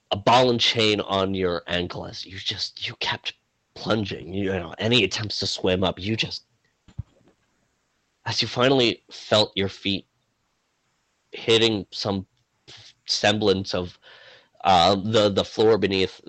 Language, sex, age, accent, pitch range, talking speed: English, male, 30-49, American, 95-125 Hz, 135 wpm